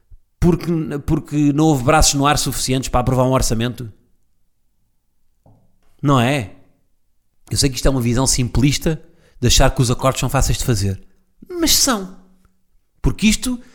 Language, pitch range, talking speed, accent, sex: Portuguese, 115-185 Hz, 155 wpm, Portuguese, male